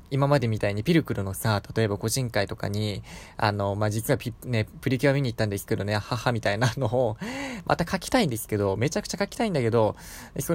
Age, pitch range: 20-39, 105-150 Hz